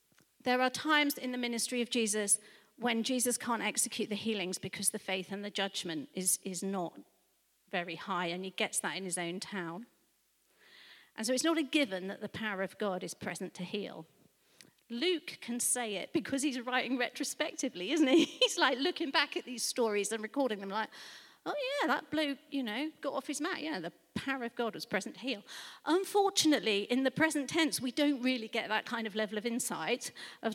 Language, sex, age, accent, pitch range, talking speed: English, female, 40-59, British, 210-270 Hz, 205 wpm